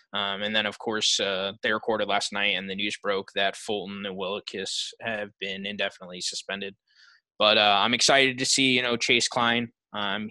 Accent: American